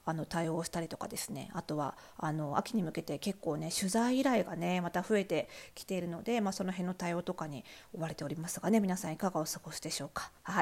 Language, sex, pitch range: Japanese, female, 190-275 Hz